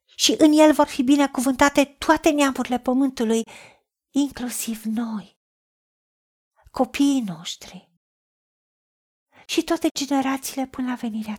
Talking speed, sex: 100 wpm, female